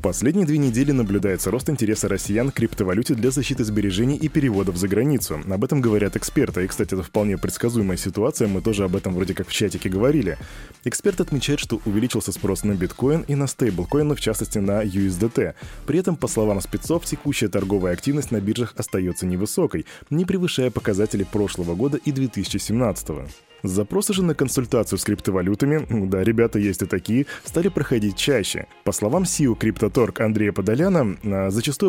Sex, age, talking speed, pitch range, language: male, 20-39, 170 wpm, 100-145 Hz, Russian